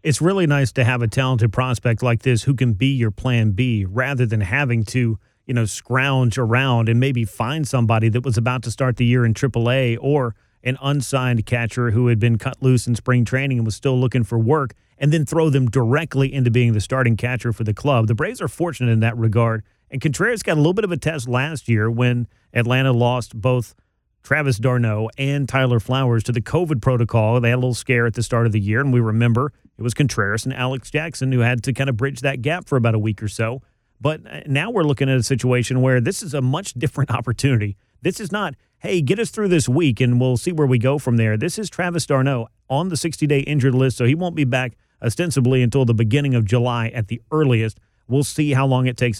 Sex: male